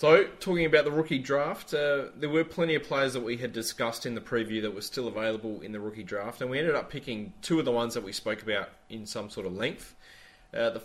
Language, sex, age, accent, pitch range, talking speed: English, male, 20-39, Australian, 110-130 Hz, 260 wpm